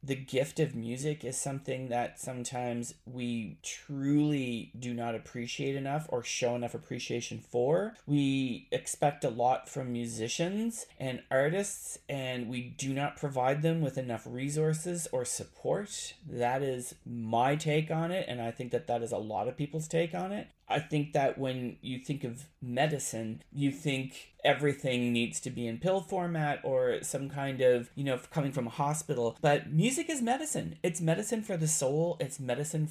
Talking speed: 175 wpm